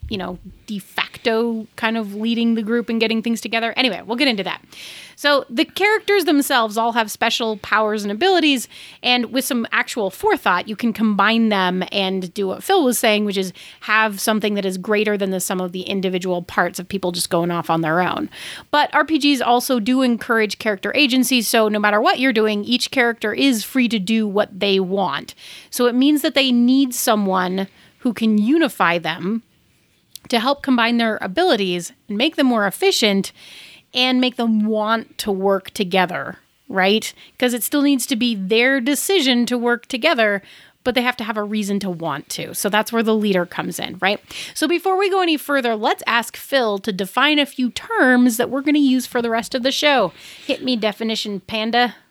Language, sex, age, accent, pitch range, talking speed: English, female, 30-49, American, 205-255 Hz, 200 wpm